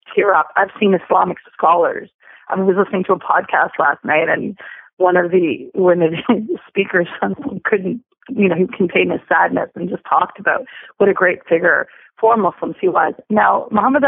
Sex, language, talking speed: female, English, 180 wpm